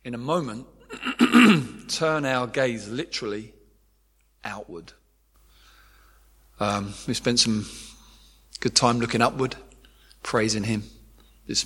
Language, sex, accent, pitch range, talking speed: English, male, British, 100-120 Hz, 100 wpm